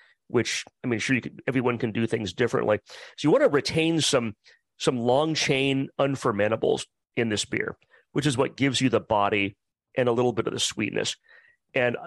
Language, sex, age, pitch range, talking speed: English, male, 40-59, 115-145 Hz, 195 wpm